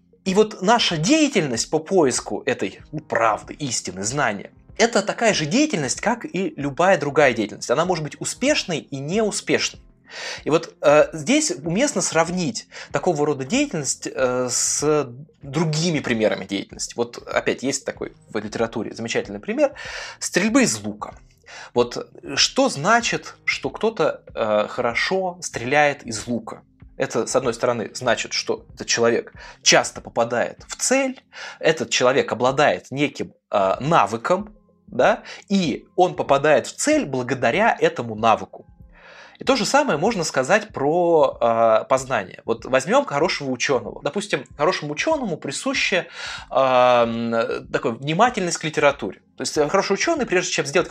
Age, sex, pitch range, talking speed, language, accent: 20-39, male, 135-220 Hz, 135 wpm, Russian, native